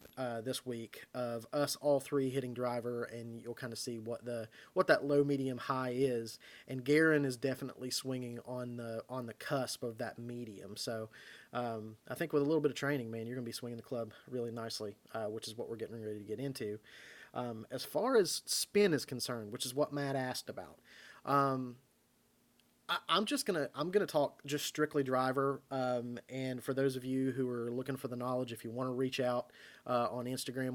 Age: 30-49